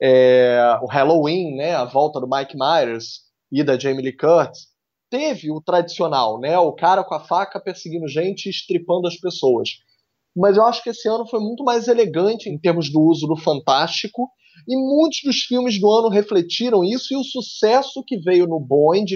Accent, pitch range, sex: Brazilian, 165-235 Hz, male